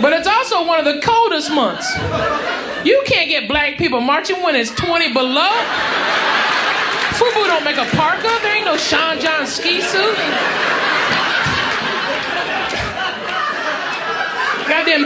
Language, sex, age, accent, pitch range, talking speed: English, male, 30-49, American, 280-365 Hz, 125 wpm